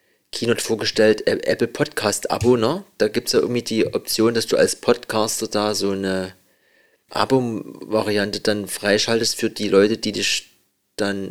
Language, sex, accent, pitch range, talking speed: German, male, German, 105-130 Hz, 155 wpm